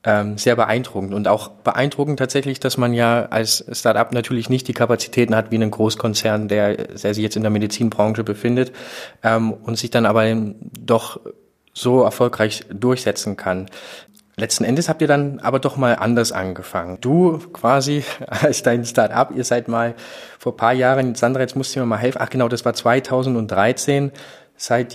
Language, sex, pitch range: German, male, 110-125 Hz